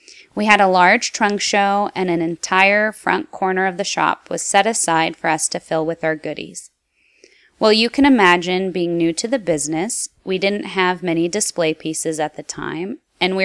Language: English